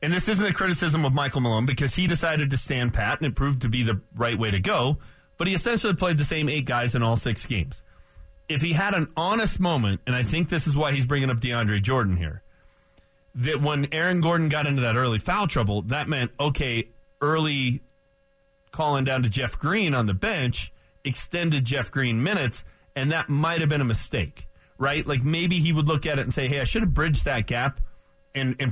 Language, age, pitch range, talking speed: English, 30-49, 115-150 Hz, 220 wpm